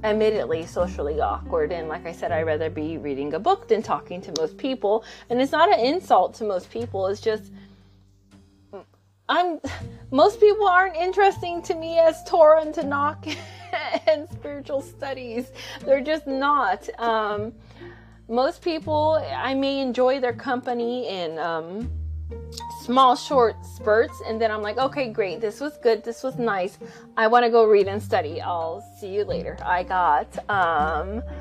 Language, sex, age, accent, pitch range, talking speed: English, female, 30-49, American, 175-275 Hz, 160 wpm